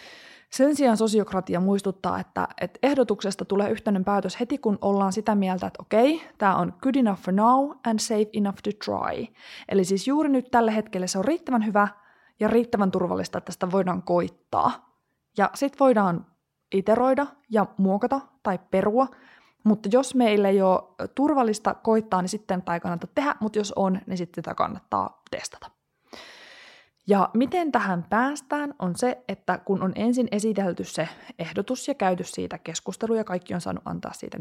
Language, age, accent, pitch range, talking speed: Finnish, 20-39, native, 190-250 Hz, 170 wpm